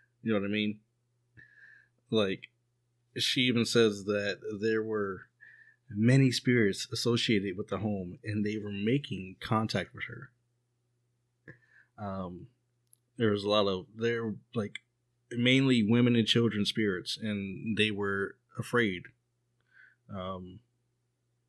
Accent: American